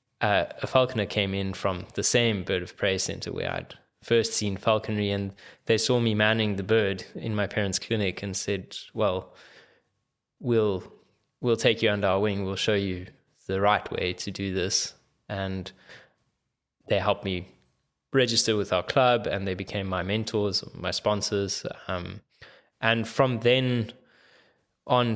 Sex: male